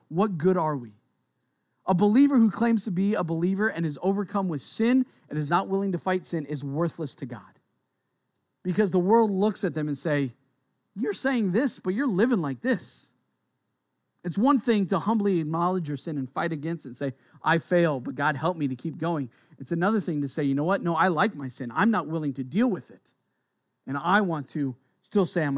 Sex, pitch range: male, 140-185 Hz